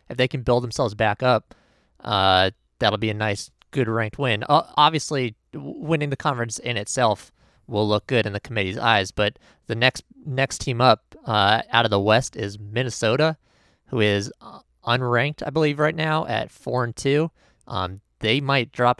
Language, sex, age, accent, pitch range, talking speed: English, male, 20-39, American, 105-135 Hz, 180 wpm